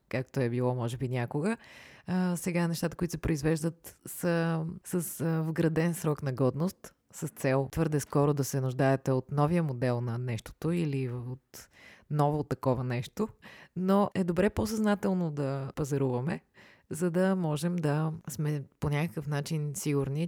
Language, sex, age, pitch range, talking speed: Bulgarian, female, 20-39, 140-175 Hz, 155 wpm